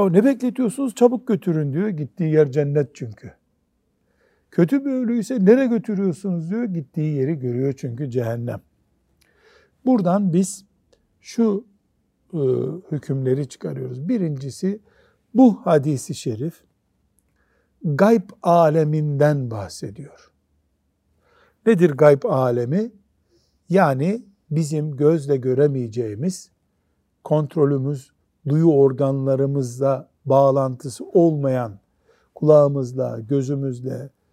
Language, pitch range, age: Turkish, 130-175 Hz, 60-79